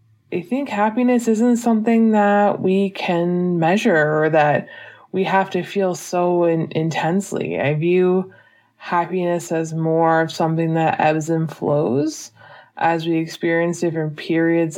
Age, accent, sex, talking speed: 20-39, American, female, 135 wpm